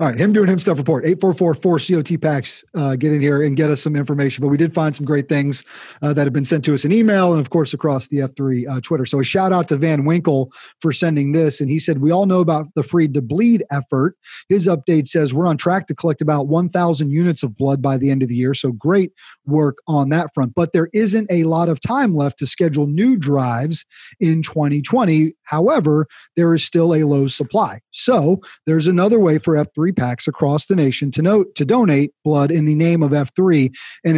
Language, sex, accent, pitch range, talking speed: English, male, American, 145-175 Hz, 235 wpm